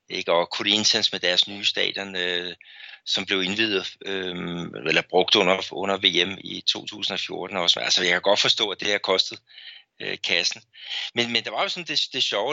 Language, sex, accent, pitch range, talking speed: Danish, male, native, 90-115 Hz, 200 wpm